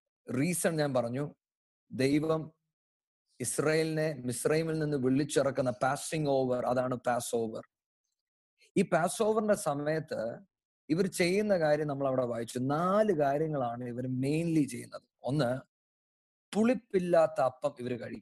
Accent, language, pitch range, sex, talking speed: Indian, English, 130-180 Hz, male, 120 wpm